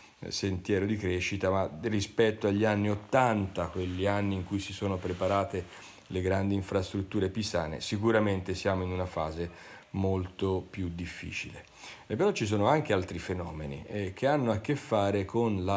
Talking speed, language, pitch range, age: 160 wpm, Italian, 95-110 Hz, 40-59